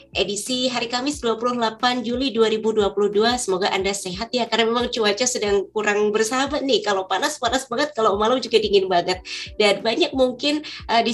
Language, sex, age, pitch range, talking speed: Indonesian, female, 20-39, 200-255 Hz, 165 wpm